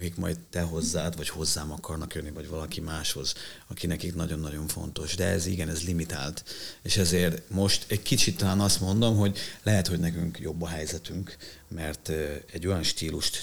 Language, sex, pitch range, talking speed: Hungarian, male, 85-100 Hz, 175 wpm